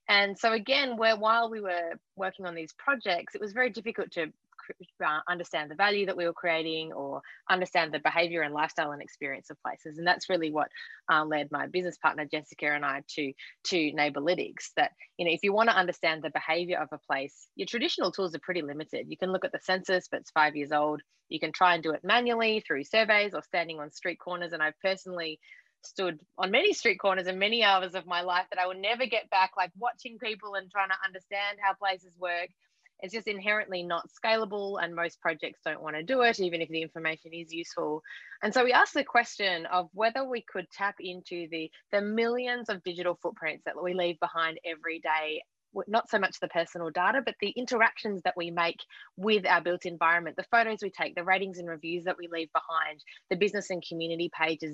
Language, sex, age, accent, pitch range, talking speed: English, female, 20-39, Australian, 165-205 Hz, 220 wpm